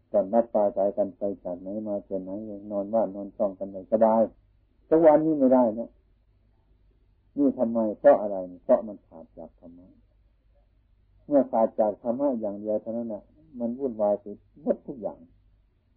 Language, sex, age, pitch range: Thai, male, 60-79, 95-120 Hz